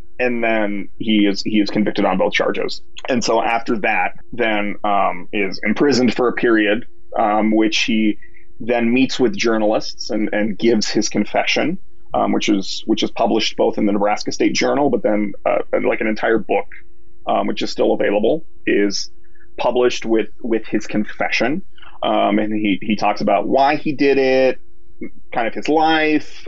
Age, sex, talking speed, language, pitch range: 30-49, male, 175 wpm, English, 105-135 Hz